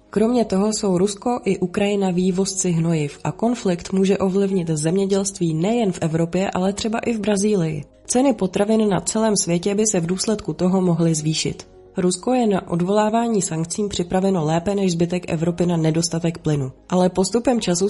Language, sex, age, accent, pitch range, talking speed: Czech, female, 20-39, native, 175-215 Hz, 165 wpm